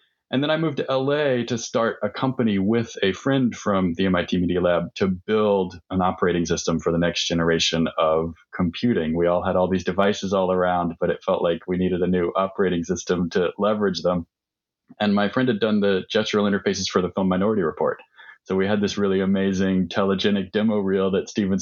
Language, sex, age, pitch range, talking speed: English, male, 30-49, 90-105 Hz, 205 wpm